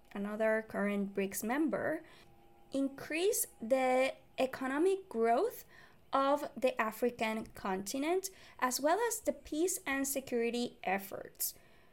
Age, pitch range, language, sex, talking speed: 20-39, 205-275 Hz, English, female, 100 wpm